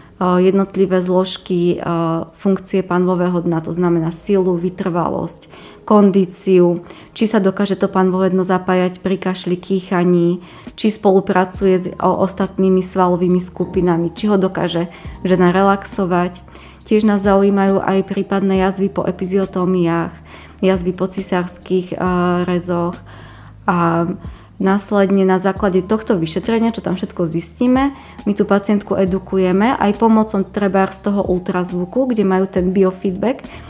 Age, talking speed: 20-39, 120 wpm